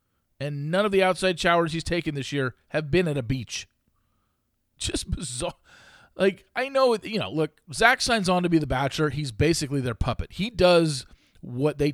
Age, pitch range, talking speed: 40-59, 125-190 Hz, 190 wpm